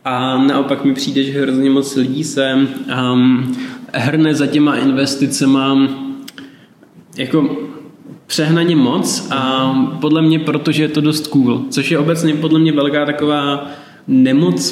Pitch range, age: 125-140 Hz, 20-39